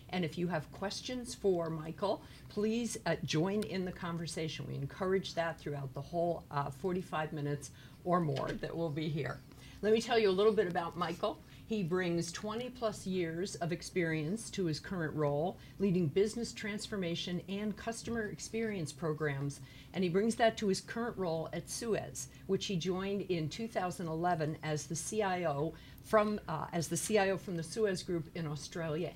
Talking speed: 175 wpm